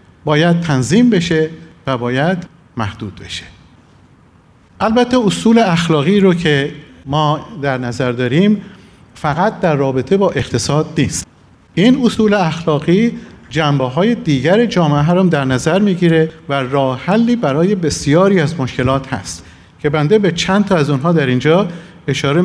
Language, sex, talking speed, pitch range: Persian, male, 135 wpm, 140-190 Hz